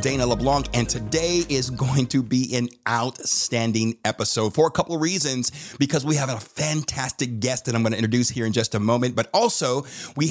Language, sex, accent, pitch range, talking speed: English, male, American, 120-145 Hz, 205 wpm